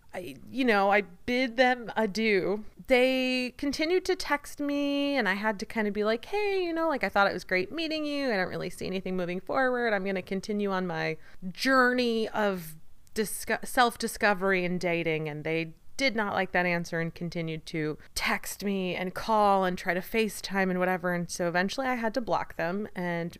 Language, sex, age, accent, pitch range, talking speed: English, female, 30-49, American, 170-225 Hz, 200 wpm